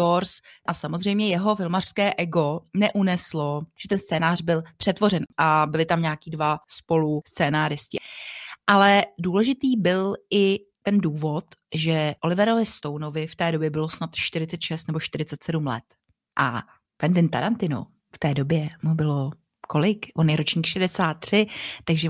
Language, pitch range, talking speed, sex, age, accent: Czech, 160-195 Hz, 135 wpm, female, 30-49, native